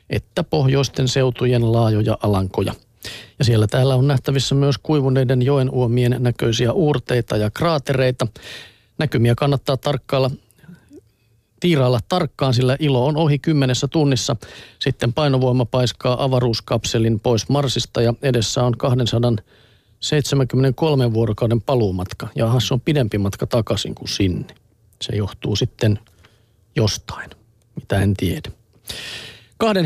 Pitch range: 115-140 Hz